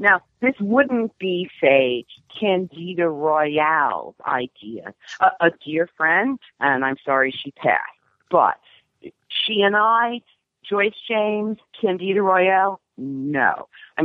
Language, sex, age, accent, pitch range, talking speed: English, female, 50-69, American, 140-195 Hz, 115 wpm